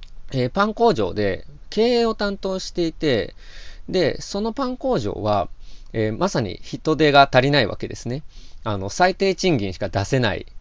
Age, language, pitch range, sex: 20-39, Japanese, 110-175 Hz, male